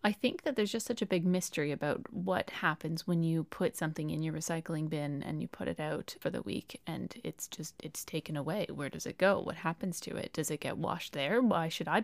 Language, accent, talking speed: English, American, 250 wpm